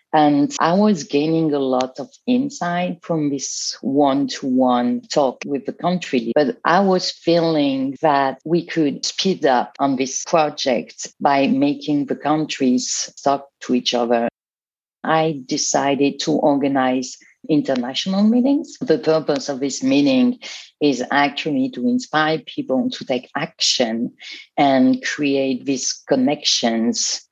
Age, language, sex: 40-59, English, female